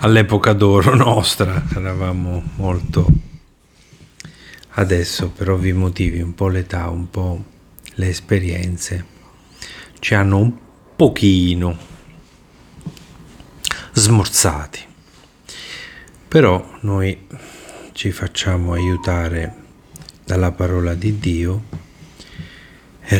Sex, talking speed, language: male, 80 wpm, Italian